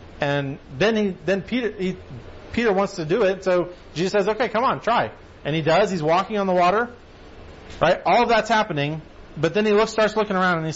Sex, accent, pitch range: male, American, 140-200 Hz